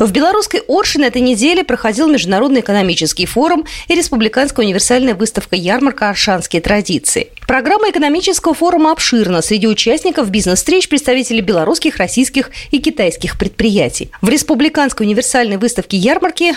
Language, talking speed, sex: Russian, 120 wpm, female